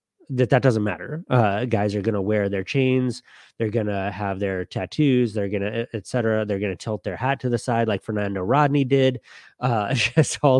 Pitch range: 105-125 Hz